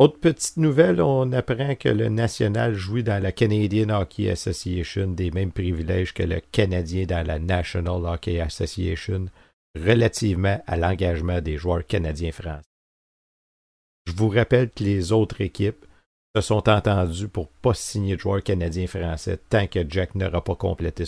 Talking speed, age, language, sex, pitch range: 160 wpm, 50-69, French, male, 85-110 Hz